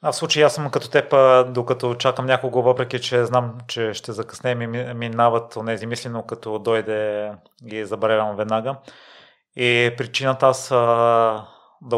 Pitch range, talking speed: 115-125 Hz, 150 wpm